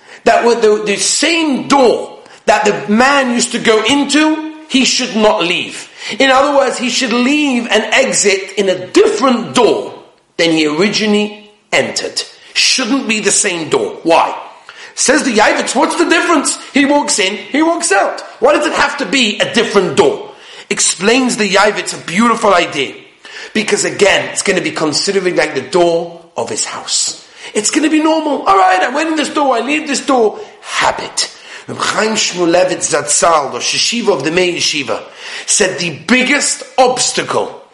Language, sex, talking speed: English, male, 175 wpm